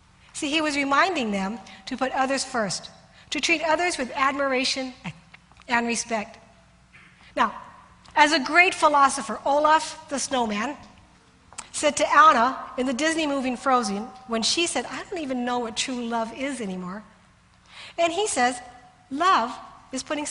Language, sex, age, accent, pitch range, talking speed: English, female, 50-69, American, 215-285 Hz, 150 wpm